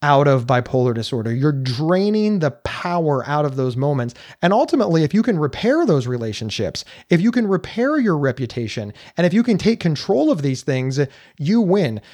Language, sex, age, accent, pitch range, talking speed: English, male, 30-49, American, 170-255 Hz, 185 wpm